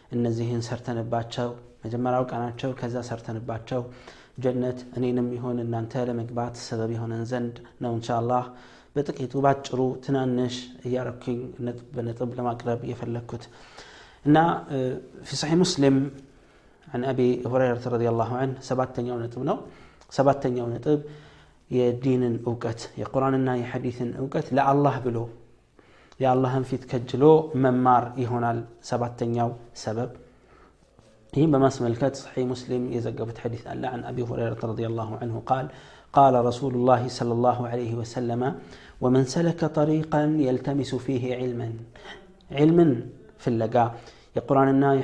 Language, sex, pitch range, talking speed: Amharic, male, 120-130 Hz, 125 wpm